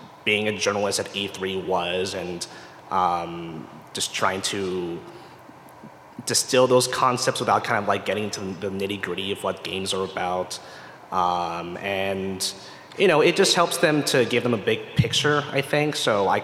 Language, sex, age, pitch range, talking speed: English, male, 30-49, 95-120 Hz, 170 wpm